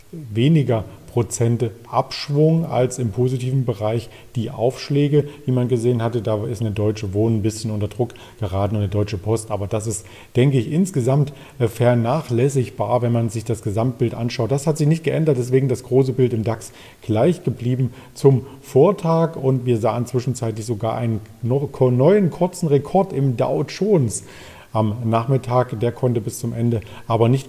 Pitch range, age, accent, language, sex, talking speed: 115-140 Hz, 40-59, German, German, male, 165 wpm